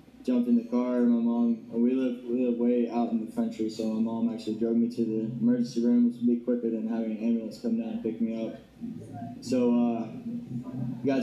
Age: 20-39